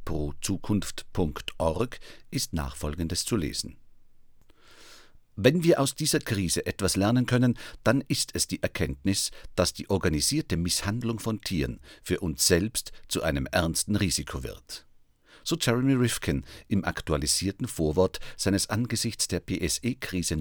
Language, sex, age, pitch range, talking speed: German, male, 50-69, 80-115 Hz, 125 wpm